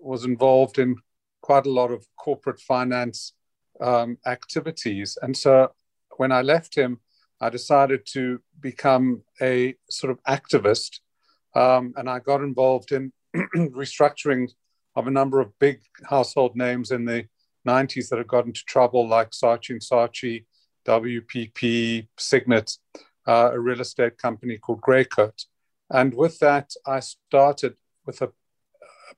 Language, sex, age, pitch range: English, male, 50-69, 120-135 Hz